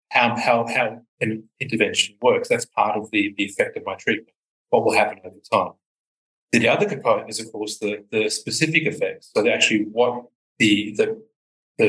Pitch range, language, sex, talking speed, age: 110-160 Hz, English, male, 180 wpm, 30-49